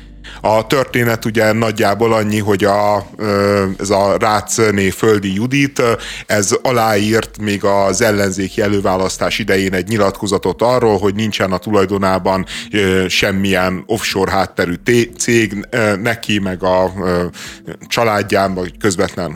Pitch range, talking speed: 95-115 Hz, 115 wpm